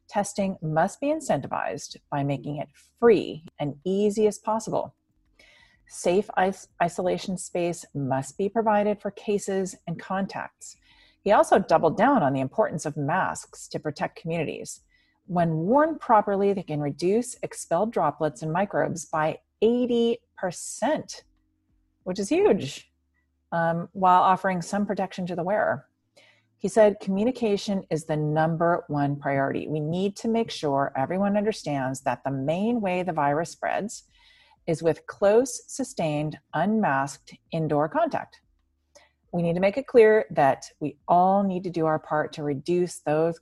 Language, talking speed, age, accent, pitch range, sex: English, 140 wpm, 40-59, American, 150-205 Hz, female